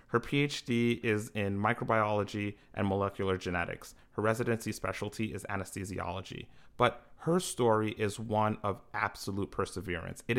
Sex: male